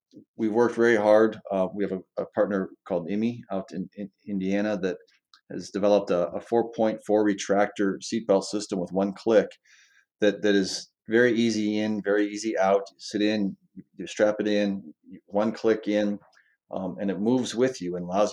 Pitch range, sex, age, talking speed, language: 95-105 Hz, male, 30-49, 175 wpm, English